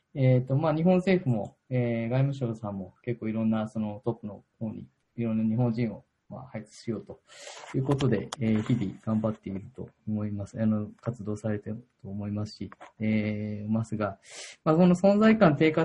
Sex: male